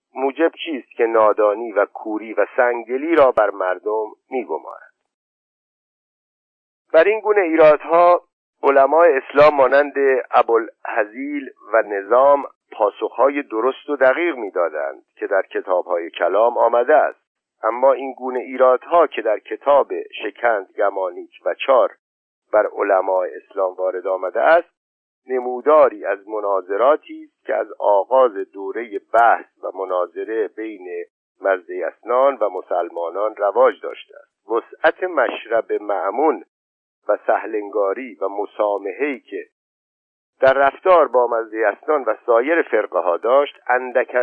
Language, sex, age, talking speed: Persian, male, 50-69, 115 wpm